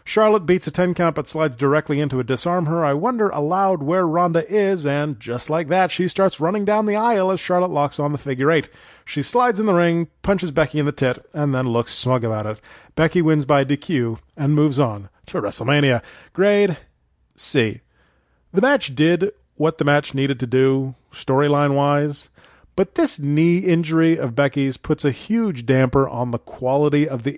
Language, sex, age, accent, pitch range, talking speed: English, male, 30-49, American, 130-175 Hz, 190 wpm